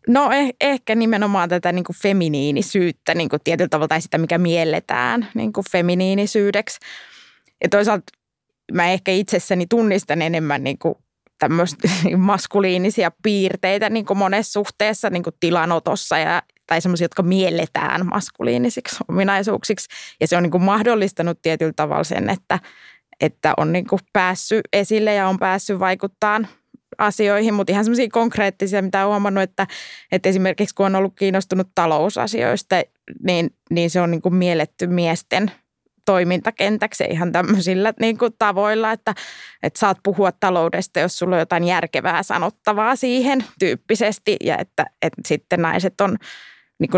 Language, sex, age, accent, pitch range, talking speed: Finnish, female, 20-39, native, 175-210 Hz, 135 wpm